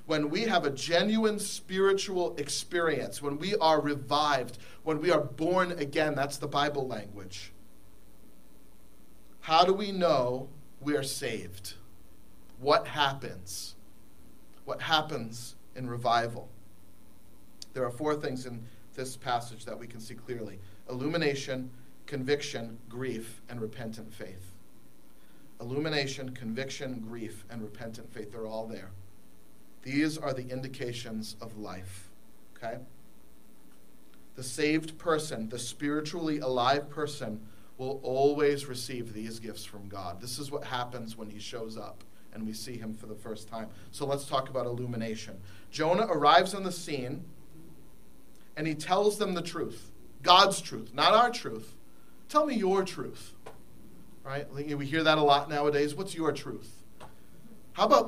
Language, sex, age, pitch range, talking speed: English, male, 40-59, 110-150 Hz, 140 wpm